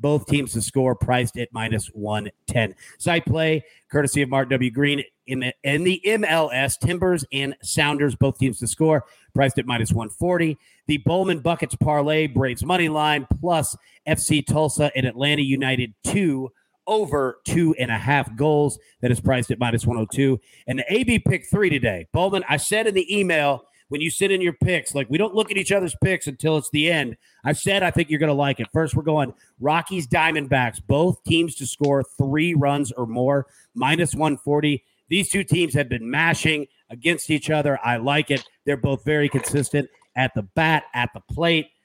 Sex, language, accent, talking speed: male, English, American, 185 wpm